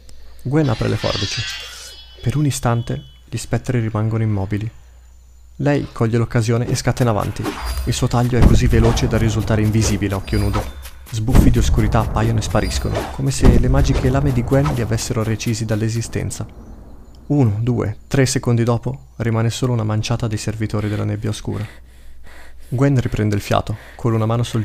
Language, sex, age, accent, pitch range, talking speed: Italian, male, 30-49, native, 100-120 Hz, 170 wpm